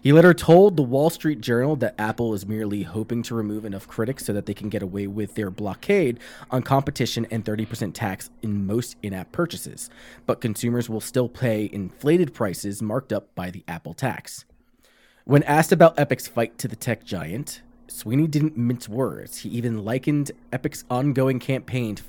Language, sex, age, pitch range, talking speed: English, male, 20-39, 110-135 Hz, 180 wpm